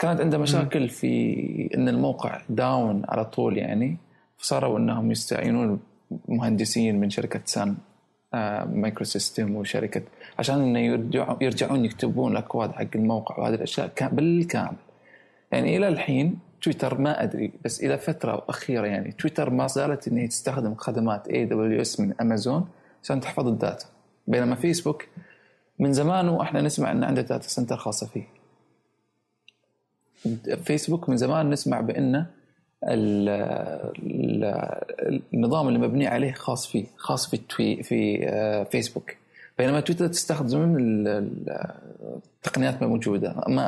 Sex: male